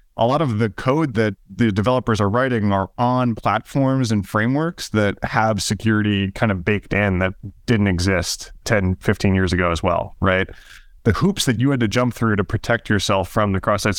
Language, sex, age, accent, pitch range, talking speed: English, male, 20-39, American, 95-115 Hz, 195 wpm